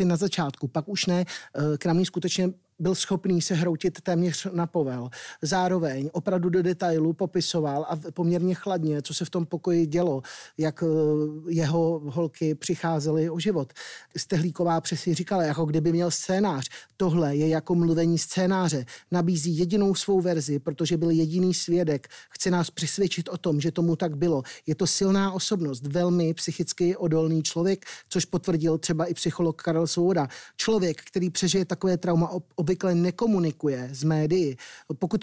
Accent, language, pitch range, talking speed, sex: native, Czech, 160-185 Hz, 150 wpm, male